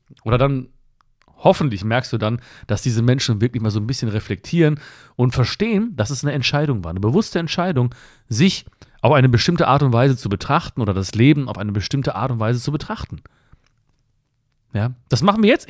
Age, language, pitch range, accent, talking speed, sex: 40-59, German, 115-155 Hz, German, 190 wpm, male